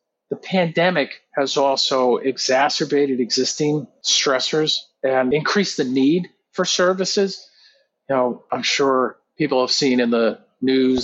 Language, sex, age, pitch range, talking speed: English, male, 40-59, 120-140 Hz, 125 wpm